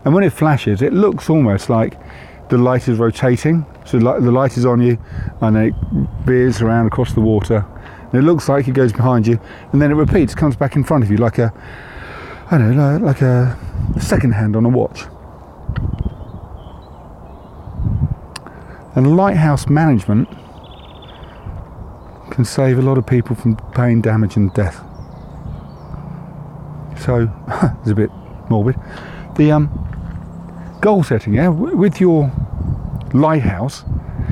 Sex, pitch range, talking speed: male, 105-145 Hz, 145 wpm